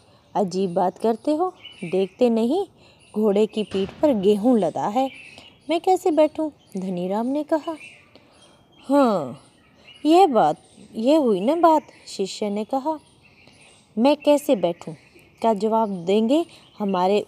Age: 20-39